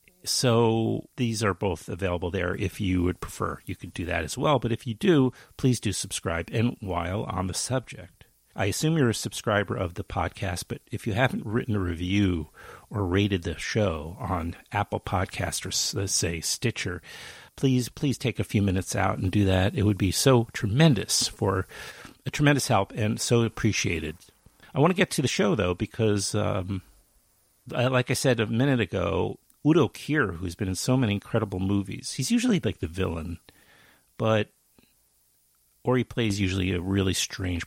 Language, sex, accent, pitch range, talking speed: English, male, American, 95-125 Hz, 180 wpm